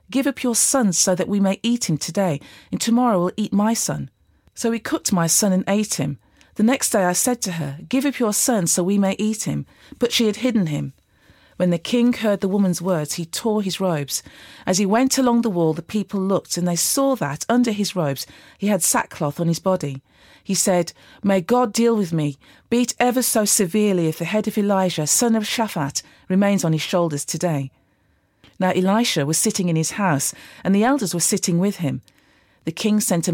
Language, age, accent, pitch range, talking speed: English, 40-59, British, 160-220 Hz, 220 wpm